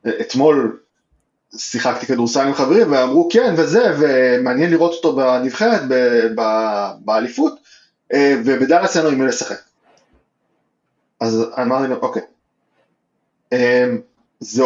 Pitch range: 115-150 Hz